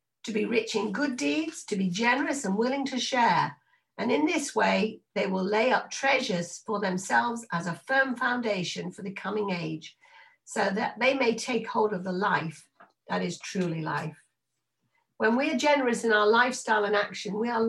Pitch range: 195-275 Hz